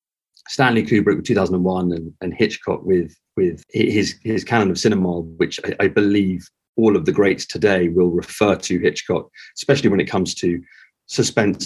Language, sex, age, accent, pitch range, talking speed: English, male, 30-49, British, 85-115 Hz, 170 wpm